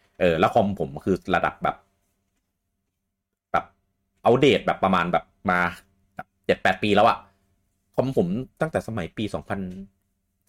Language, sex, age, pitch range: Thai, male, 30-49, 90-100 Hz